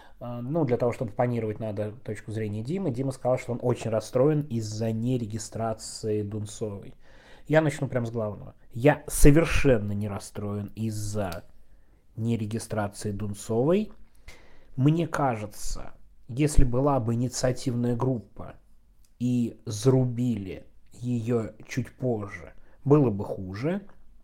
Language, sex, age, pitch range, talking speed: Russian, male, 20-39, 110-130 Hz, 110 wpm